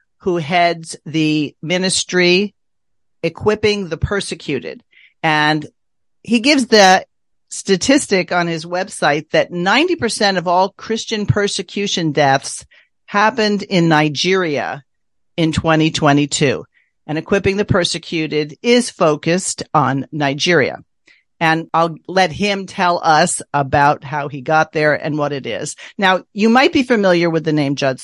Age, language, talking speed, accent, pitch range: 50-69, English, 125 wpm, American, 150-200 Hz